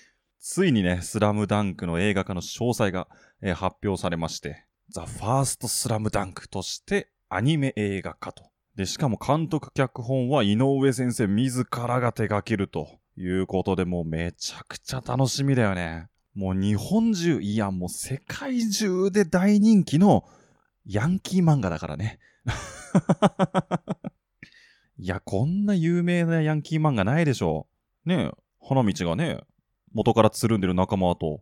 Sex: male